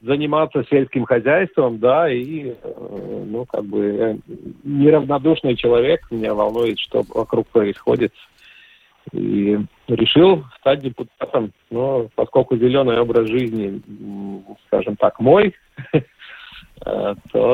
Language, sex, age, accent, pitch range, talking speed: Russian, male, 50-69, native, 110-145 Hz, 95 wpm